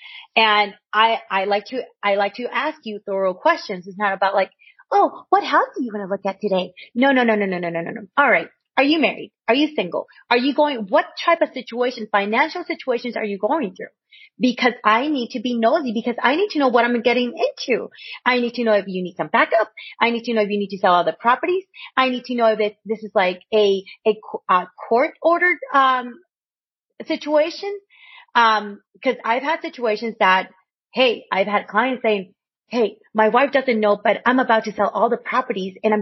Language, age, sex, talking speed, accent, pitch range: English, 30-49, female, 220 wpm, American, 205-270 Hz